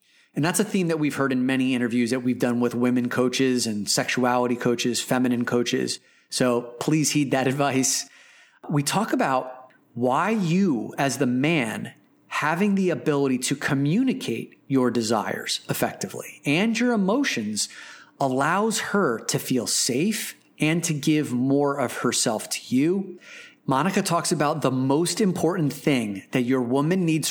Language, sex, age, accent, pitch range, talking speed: English, male, 30-49, American, 125-165 Hz, 150 wpm